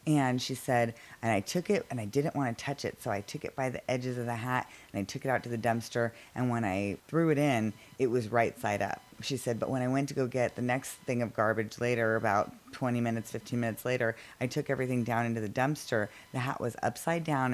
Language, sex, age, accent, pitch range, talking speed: English, female, 30-49, American, 110-130 Hz, 260 wpm